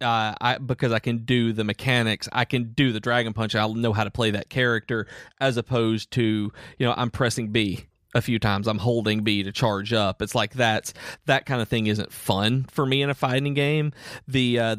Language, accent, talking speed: English, American, 225 wpm